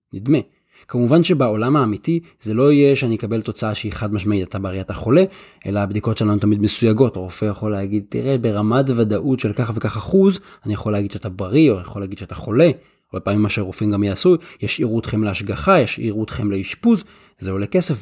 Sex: male